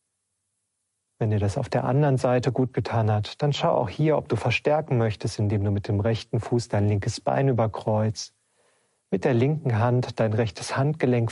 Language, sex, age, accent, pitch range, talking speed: German, male, 40-59, German, 105-125 Hz, 185 wpm